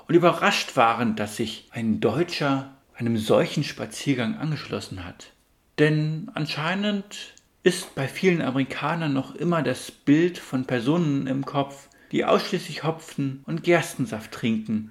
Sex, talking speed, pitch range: male, 130 wpm, 120-165 Hz